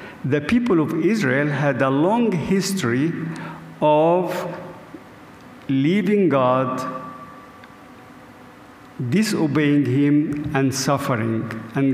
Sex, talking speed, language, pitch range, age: male, 80 wpm, English, 130-165 Hz, 50-69